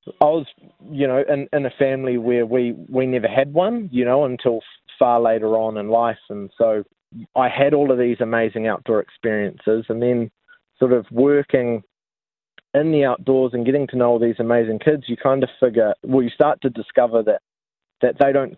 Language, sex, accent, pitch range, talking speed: English, male, Australian, 110-130 Hz, 195 wpm